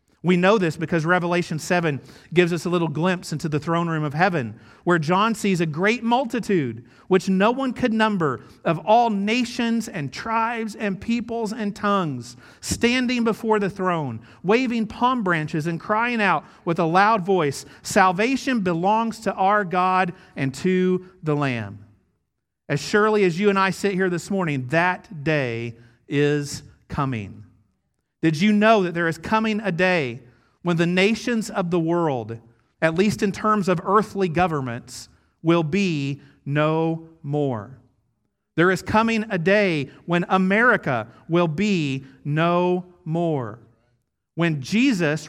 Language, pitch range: English, 140-200 Hz